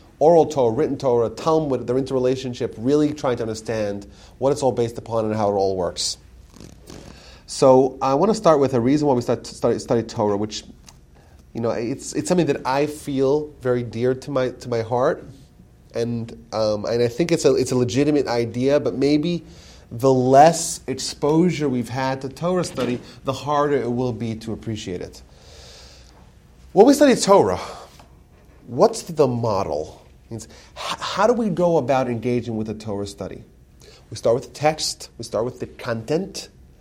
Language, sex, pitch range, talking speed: English, male, 110-155 Hz, 180 wpm